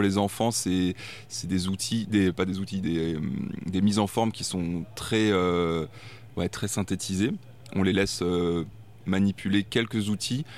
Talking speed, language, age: 170 wpm, French, 20-39